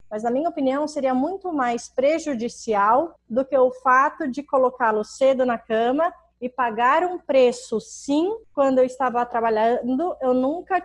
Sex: female